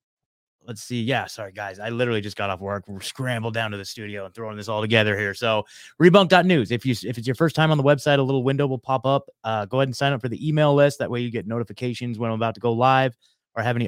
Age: 20-39